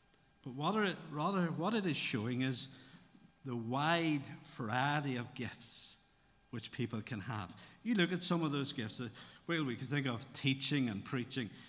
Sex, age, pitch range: male, 50-69, 115-150 Hz